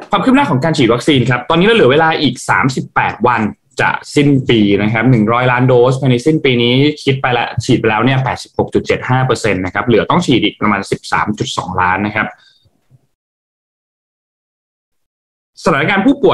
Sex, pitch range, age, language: male, 110-135 Hz, 20-39, Thai